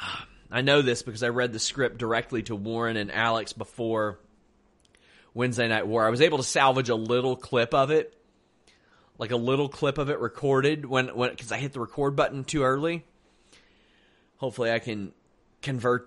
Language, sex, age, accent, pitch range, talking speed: English, male, 30-49, American, 115-145 Hz, 180 wpm